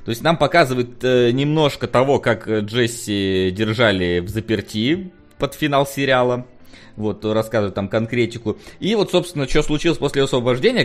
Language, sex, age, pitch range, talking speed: Russian, male, 20-39, 110-145 Hz, 145 wpm